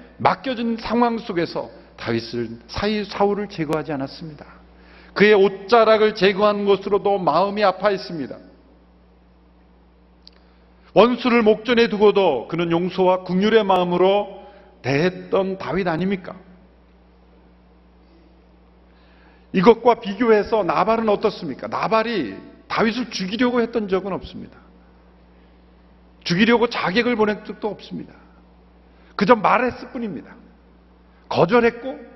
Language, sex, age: Korean, male, 50-69